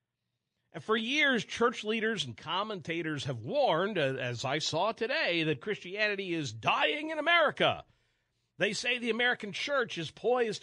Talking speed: 145 wpm